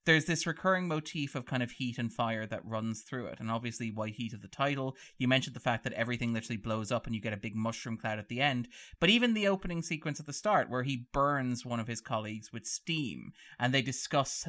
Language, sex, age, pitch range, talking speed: English, male, 30-49, 115-140 Hz, 250 wpm